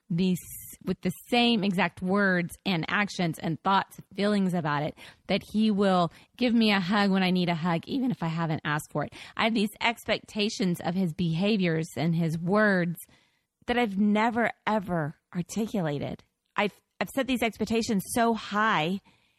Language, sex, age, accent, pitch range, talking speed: English, female, 30-49, American, 170-220 Hz, 165 wpm